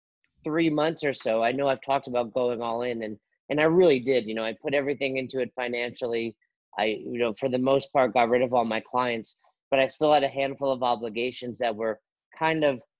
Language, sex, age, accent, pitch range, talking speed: English, male, 30-49, American, 115-135 Hz, 230 wpm